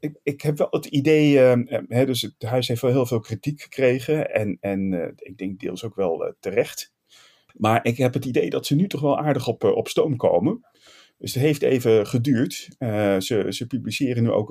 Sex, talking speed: male, 225 wpm